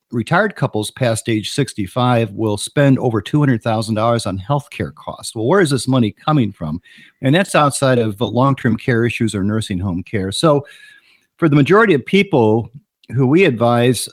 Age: 50-69